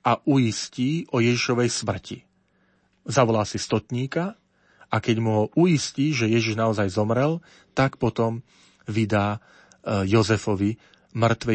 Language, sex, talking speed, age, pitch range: Slovak, male, 115 wpm, 40-59, 110-130 Hz